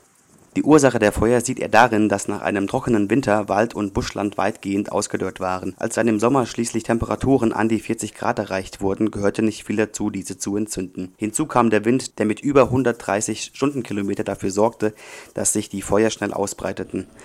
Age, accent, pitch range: 30-49, German, 100-115 Hz